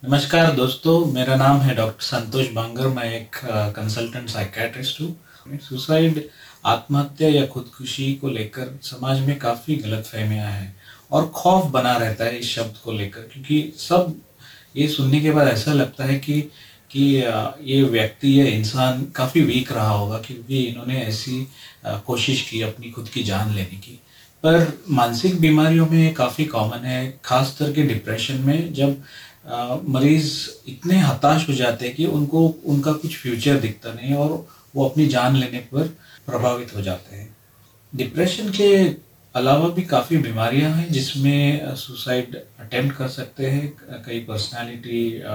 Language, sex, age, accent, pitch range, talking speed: Hindi, male, 40-59, native, 115-145 Hz, 150 wpm